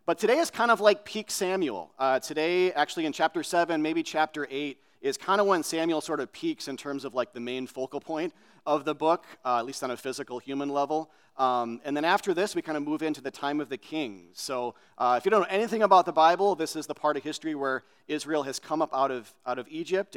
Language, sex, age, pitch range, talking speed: English, male, 40-59, 130-165 Hz, 255 wpm